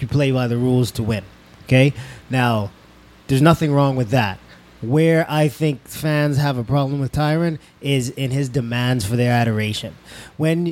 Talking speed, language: 175 wpm, English